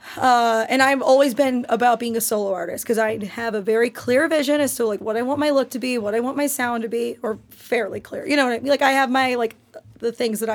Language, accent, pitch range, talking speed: English, American, 215-245 Hz, 285 wpm